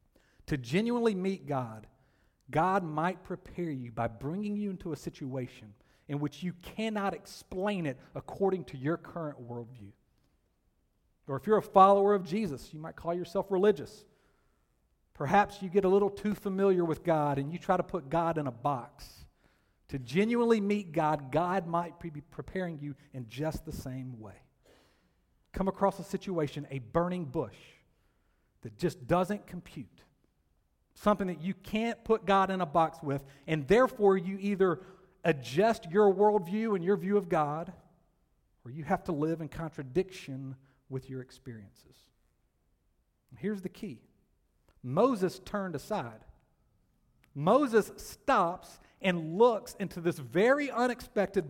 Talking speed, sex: 145 wpm, male